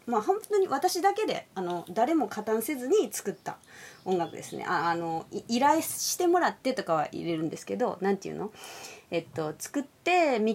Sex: female